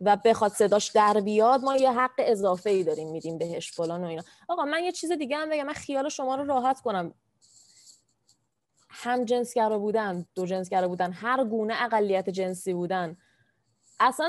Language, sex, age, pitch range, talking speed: Persian, female, 20-39, 190-305 Hz, 170 wpm